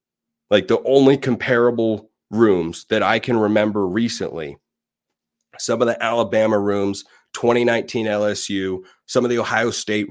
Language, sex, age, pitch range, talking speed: English, male, 30-49, 105-120 Hz, 130 wpm